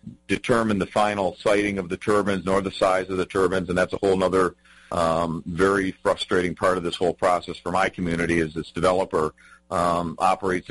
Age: 40-59